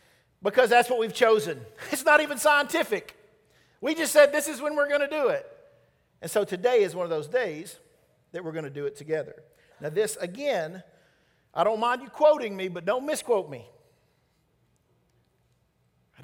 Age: 50-69